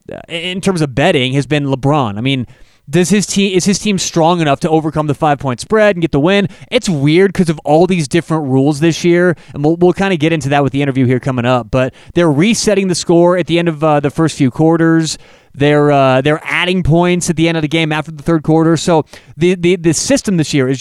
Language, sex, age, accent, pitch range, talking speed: English, male, 30-49, American, 140-180 Hz, 255 wpm